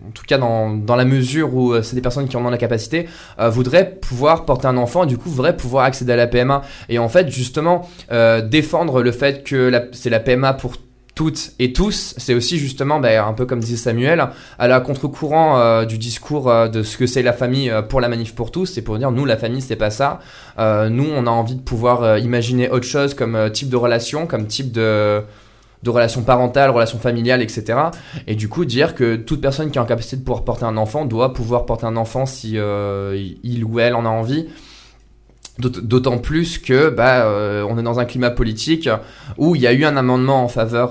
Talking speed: 235 wpm